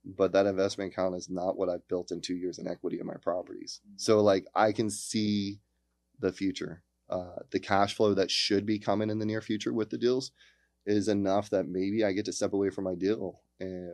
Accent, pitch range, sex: American, 90-105 Hz, male